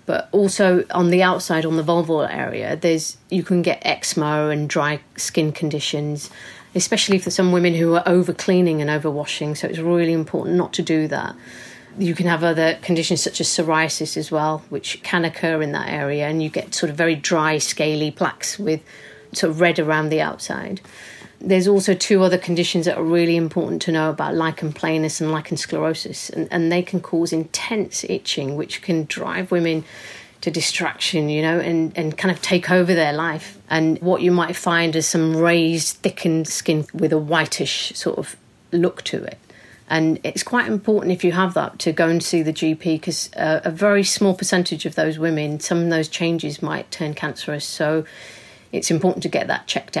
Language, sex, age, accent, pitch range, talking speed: English, female, 40-59, British, 155-180 Hz, 195 wpm